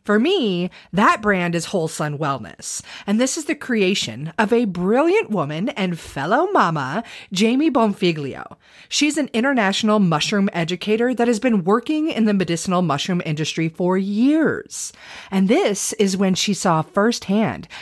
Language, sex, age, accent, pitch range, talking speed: English, female, 30-49, American, 180-245 Hz, 150 wpm